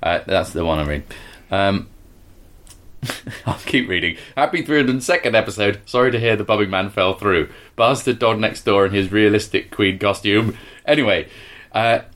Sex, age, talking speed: male, 30-49, 155 wpm